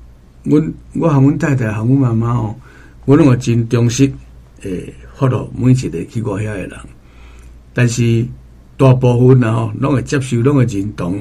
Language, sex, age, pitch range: Chinese, male, 60-79, 110-145 Hz